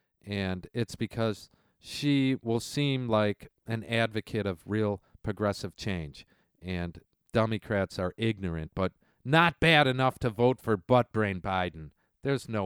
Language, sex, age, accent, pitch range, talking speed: English, male, 40-59, American, 90-125 Hz, 135 wpm